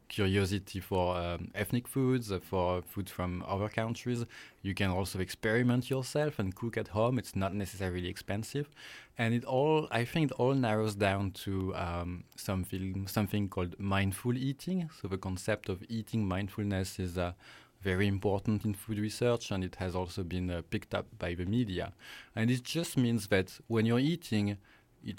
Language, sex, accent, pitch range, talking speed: English, male, French, 95-115 Hz, 175 wpm